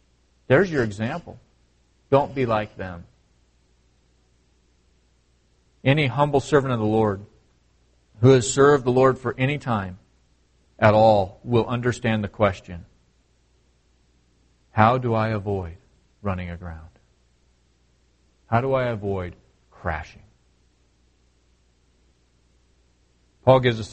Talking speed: 105 wpm